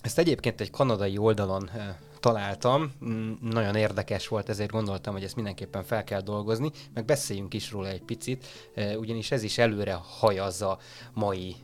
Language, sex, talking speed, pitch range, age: Hungarian, male, 165 wpm, 100-120 Hz, 20-39